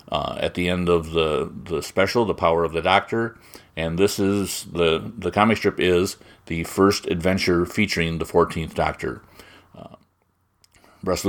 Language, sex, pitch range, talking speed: English, male, 85-95 Hz, 155 wpm